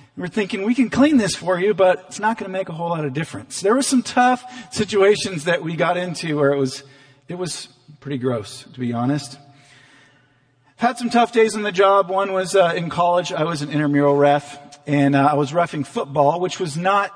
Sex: male